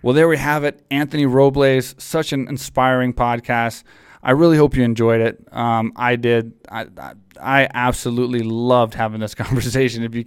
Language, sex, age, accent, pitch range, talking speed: English, male, 20-39, American, 115-130 Hz, 170 wpm